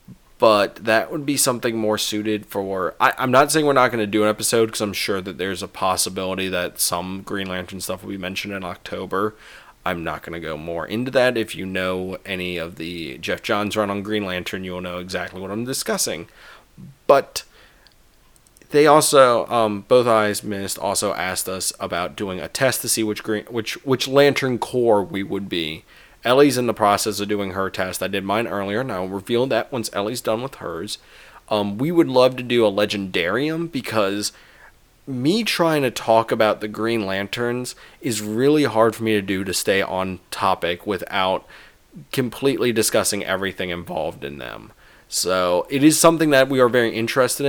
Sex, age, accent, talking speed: male, 20-39, American, 190 wpm